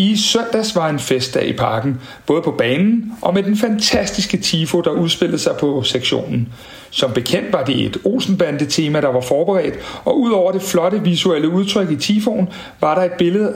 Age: 60-79